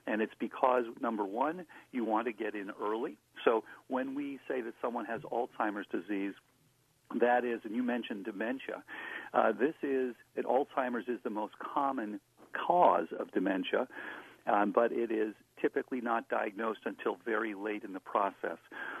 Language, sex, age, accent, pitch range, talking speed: English, male, 50-69, American, 110-135 Hz, 160 wpm